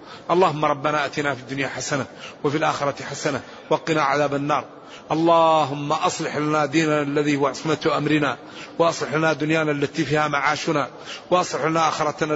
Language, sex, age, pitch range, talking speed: Arabic, male, 40-59, 140-160 Hz, 140 wpm